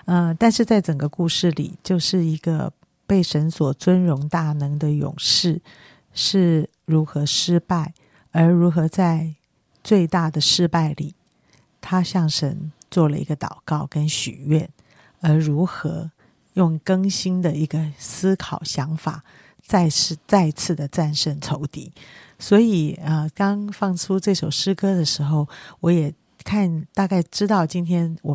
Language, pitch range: Chinese, 155-185 Hz